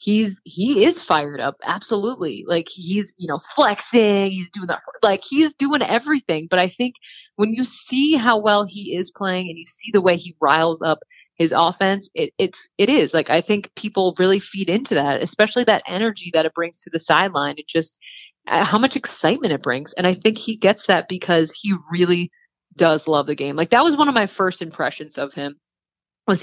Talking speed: 200 wpm